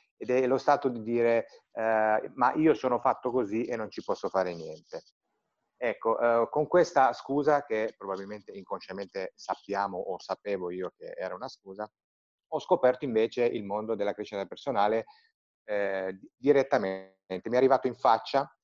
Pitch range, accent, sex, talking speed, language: 100-140 Hz, native, male, 160 wpm, Italian